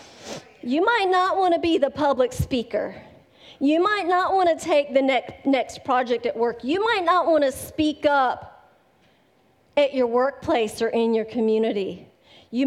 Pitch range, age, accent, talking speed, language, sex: 230-305 Hz, 40-59, American, 150 wpm, English, female